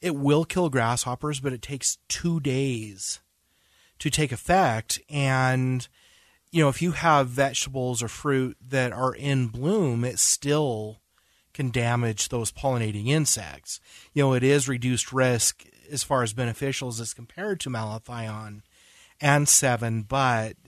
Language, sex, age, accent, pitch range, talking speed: English, male, 30-49, American, 120-145 Hz, 140 wpm